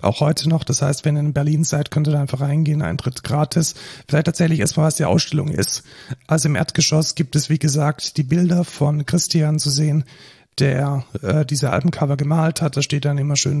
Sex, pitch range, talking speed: male, 140-155 Hz, 210 wpm